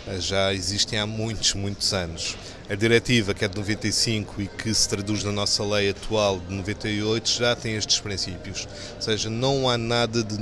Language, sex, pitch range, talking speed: Portuguese, male, 100-125 Hz, 185 wpm